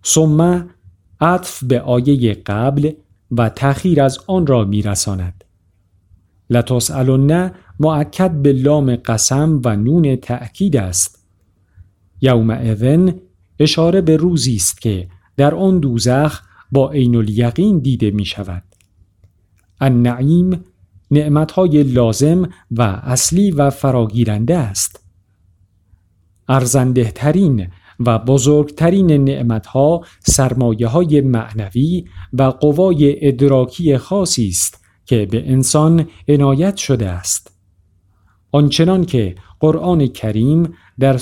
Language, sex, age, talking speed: Persian, male, 50-69, 100 wpm